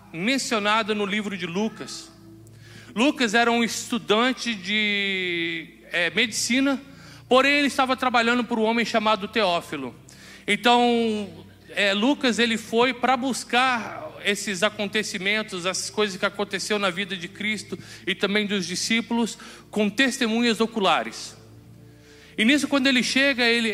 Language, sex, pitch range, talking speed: Portuguese, male, 200-240 Hz, 130 wpm